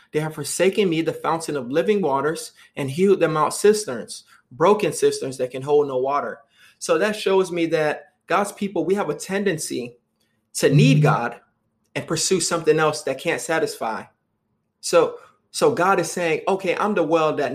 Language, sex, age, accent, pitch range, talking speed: English, male, 30-49, American, 150-195 Hz, 180 wpm